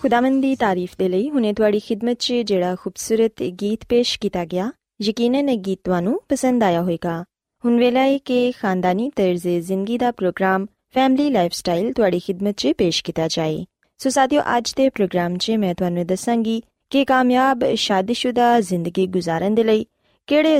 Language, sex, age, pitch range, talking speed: Punjabi, female, 20-39, 185-255 Hz, 110 wpm